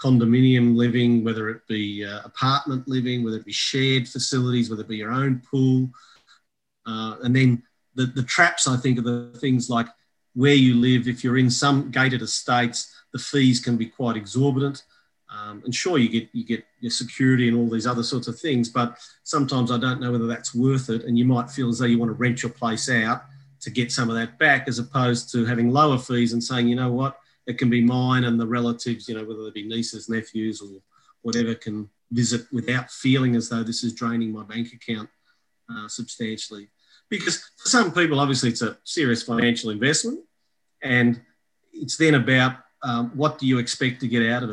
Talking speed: 205 wpm